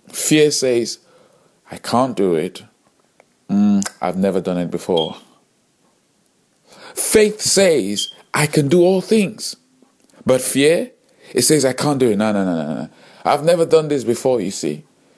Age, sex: 50-69, male